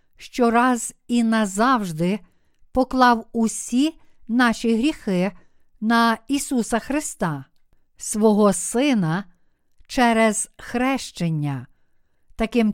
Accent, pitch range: native, 205-255 Hz